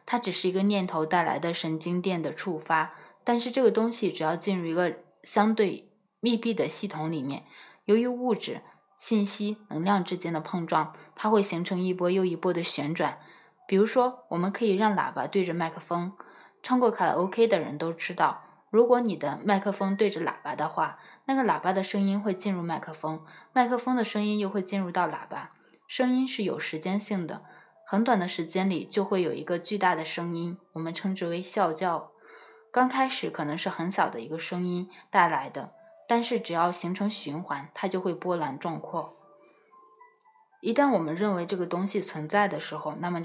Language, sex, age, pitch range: Chinese, female, 20-39, 170-210 Hz